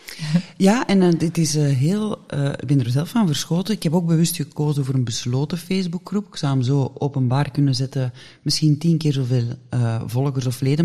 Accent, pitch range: Dutch, 130-160 Hz